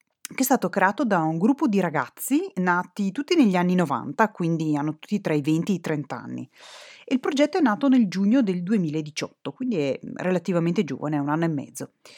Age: 30-49